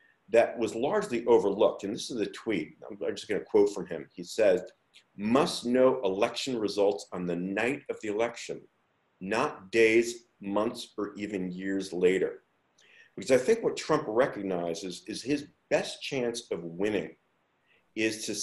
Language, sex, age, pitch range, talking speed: English, male, 40-59, 90-135 Hz, 155 wpm